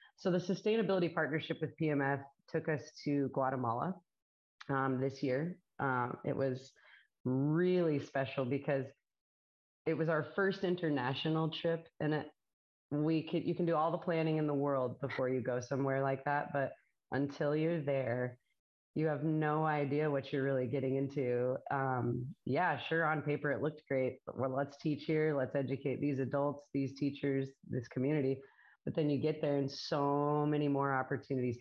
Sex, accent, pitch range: female, American, 135-160 Hz